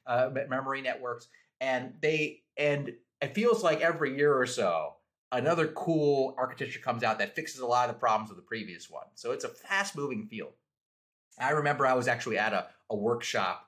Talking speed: 195 wpm